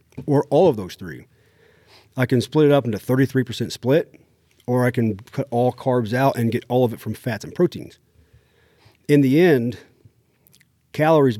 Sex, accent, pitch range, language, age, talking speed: male, American, 110-130 Hz, English, 40-59, 175 wpm